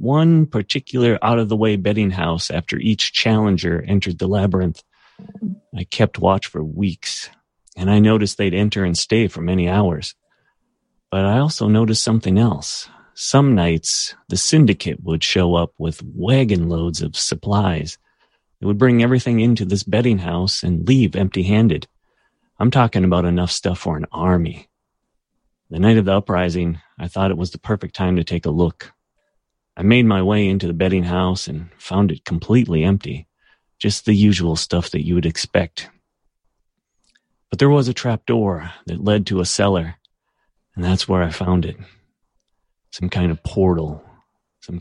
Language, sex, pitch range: English, male, 85-105 Hz